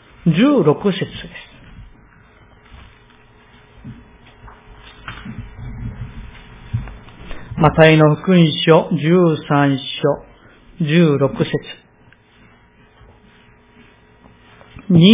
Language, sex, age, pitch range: Japanese, male, 50-69, 140-220 Hz